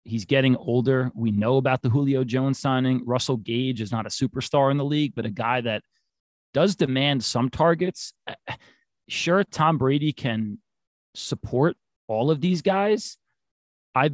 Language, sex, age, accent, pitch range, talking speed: English, male, 30-49, American, 115-140 Hz, 155 wpm